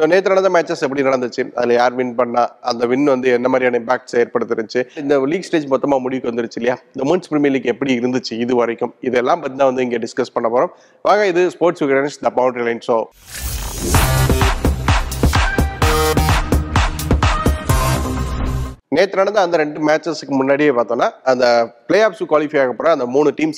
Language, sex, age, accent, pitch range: Tamil, male, 30-49, native, 120-150 Hz